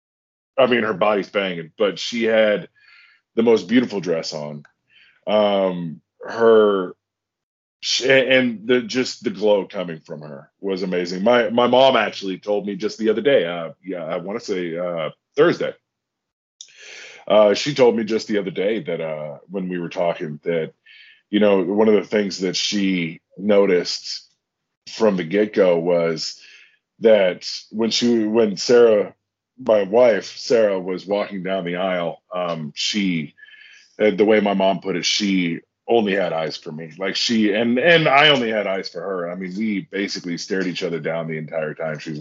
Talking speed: 175 wpm